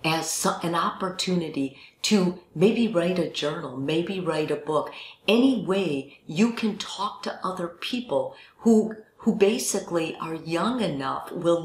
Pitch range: 140-185 Hz